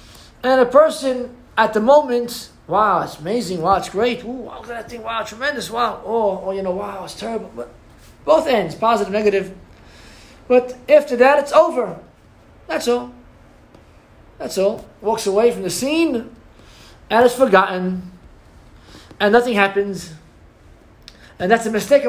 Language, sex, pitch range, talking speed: English, male, 205-265 Hz, 150 wpm